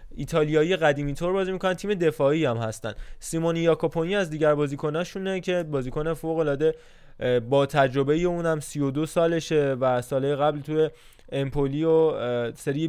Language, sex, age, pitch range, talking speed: Persian, male, 20-39, 135-165 Hz, 145 wpm